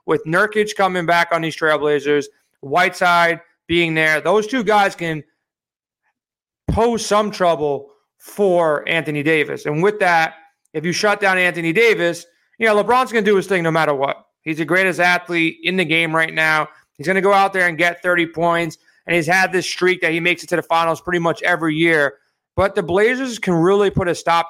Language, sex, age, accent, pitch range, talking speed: English, male, 30-49, American, 160-190 Hz, 205 wpm